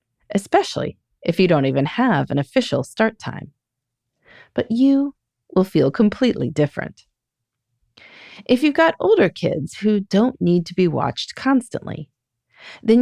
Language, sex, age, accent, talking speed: English, female, 30-49, American, 135 wpm